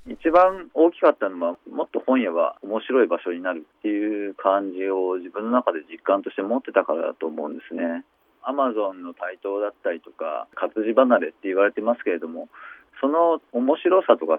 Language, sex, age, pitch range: Japanese, male, 40-59, 95-130 Hz